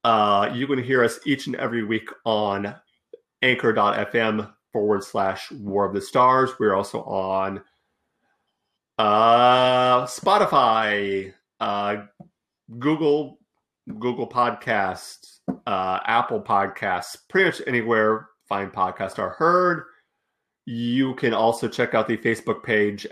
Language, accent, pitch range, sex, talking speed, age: English, American, 100-125 Hz, male, 115 wpm, 40-59